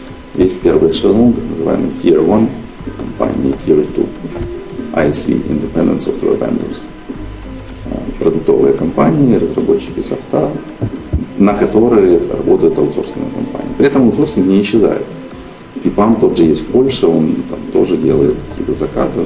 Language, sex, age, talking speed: Russian, male, 40-59, 130 wpm